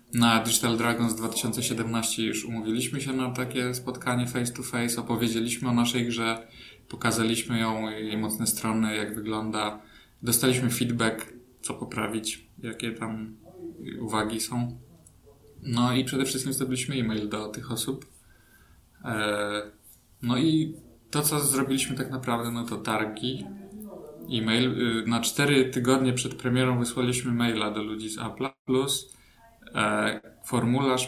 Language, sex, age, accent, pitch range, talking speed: Polish, male, 20-39, native, 110-125 Hz, 125 wpm